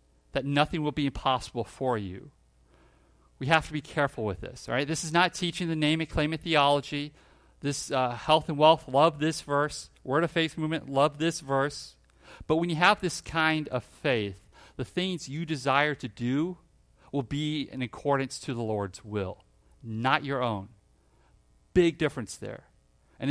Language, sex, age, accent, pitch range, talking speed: English, male, 40-59, American, 120-160 Hz, 185 wpm